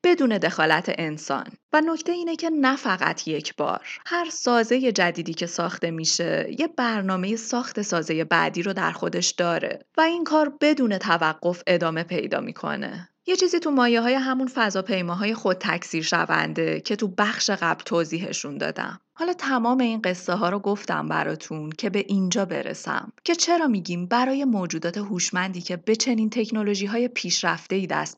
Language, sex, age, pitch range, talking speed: Persian, female, 30-49, 175-255 Hz, 165 wpm